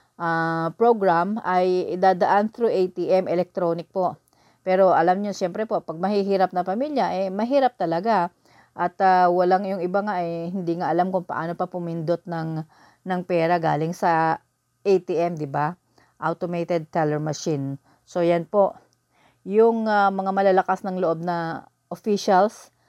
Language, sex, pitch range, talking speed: English, female, 170-195 Hz, 145 wpm